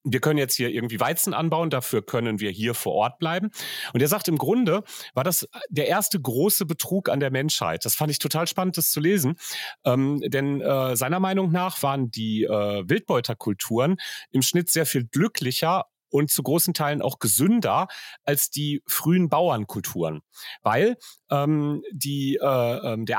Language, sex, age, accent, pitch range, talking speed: German, male, 40-59, German, 130-180 Hz, 170 wpm